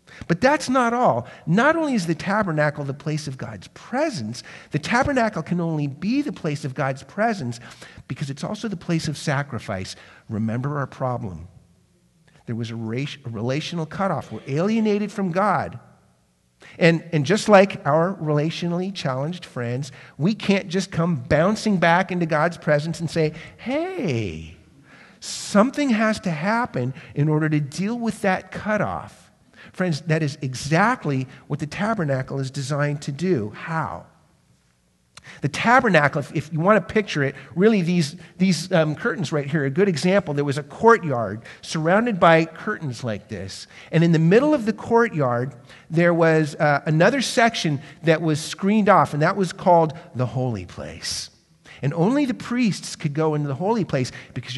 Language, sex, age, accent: English, male, 50-69, American